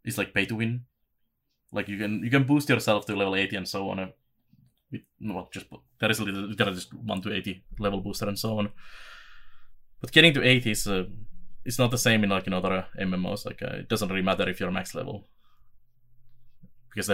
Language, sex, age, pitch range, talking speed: English, male, 20-39, 95-110 Hz, 210 wpm